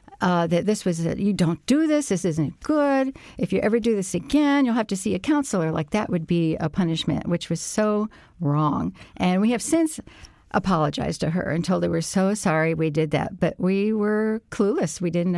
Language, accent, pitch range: English, American, 160-200 Hz